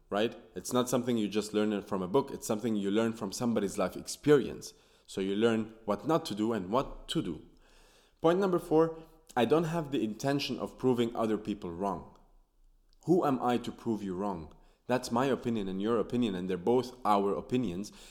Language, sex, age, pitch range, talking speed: English, male, 20-39, 100-145 Hz, 200 wpm